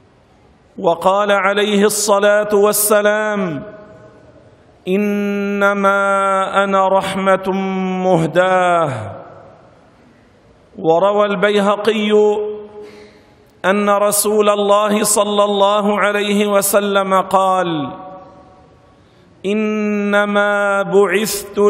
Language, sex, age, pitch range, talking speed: Arabic, male, 50-69, 185-210 Hz, 55 wpm